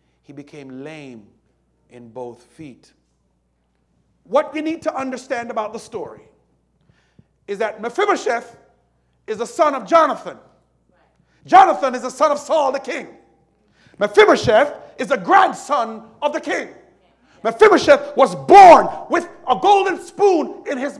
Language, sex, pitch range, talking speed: English, male, 170-285 Hz, 130 wpm